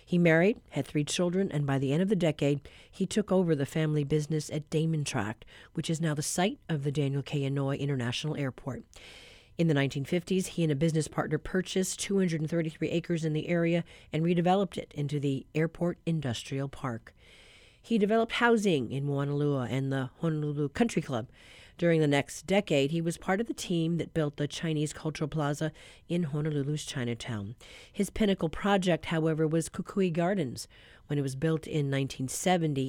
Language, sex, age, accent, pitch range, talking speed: English, female, 40-59, American, 140-175 Hz, 175 wpm